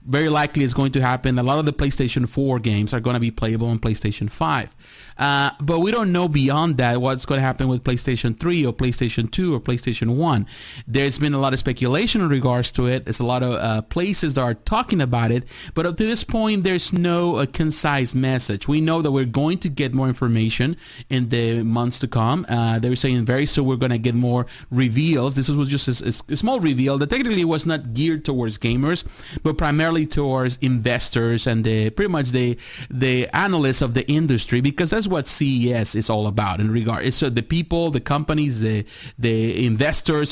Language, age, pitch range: English, 30-49, 120-150 Hz